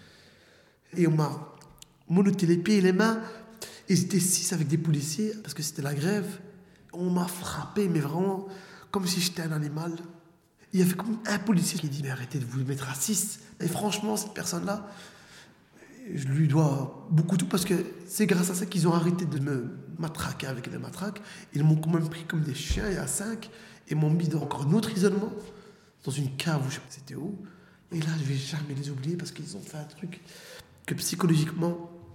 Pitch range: 150-185 Hz